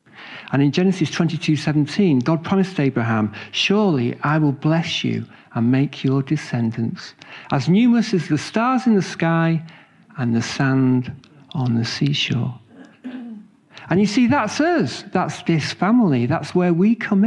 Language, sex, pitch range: English, male, 130-180 Hz